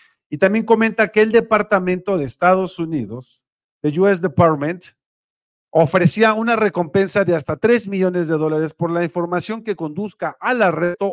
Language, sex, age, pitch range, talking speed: Spanish, male, 50-69, 145-185 Hz, 150 wpm